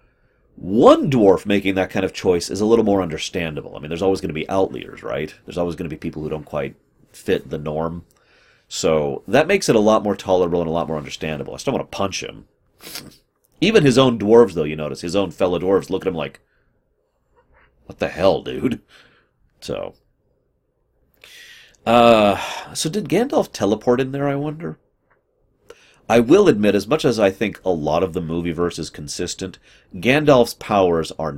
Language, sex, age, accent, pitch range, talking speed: English, male, 30-49, American, 80-110 Hz, 190 wpm